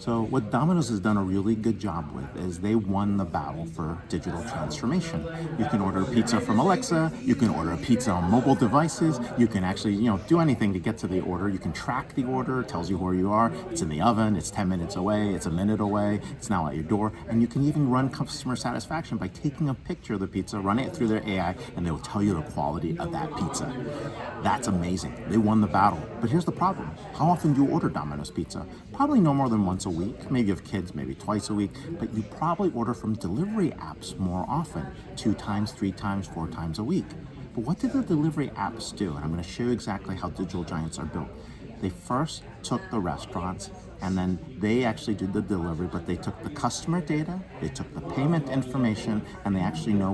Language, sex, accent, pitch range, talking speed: Spanish, male, American, 95-130 Hz, 235 wpm